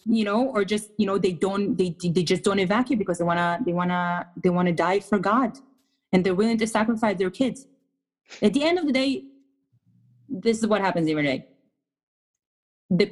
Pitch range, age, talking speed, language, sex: 185-260 Hz, 20-39, 210 wpm, English, female